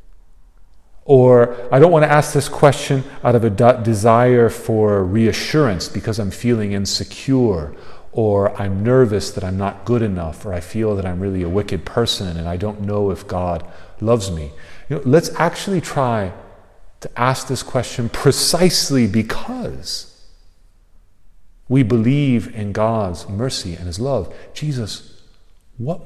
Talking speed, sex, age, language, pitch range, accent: 140 wpm, male, 40-59, English, 90-130 Hz, American